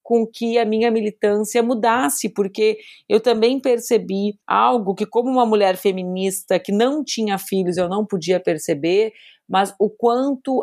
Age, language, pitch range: 30-49, Portuguese, 185-225 Hz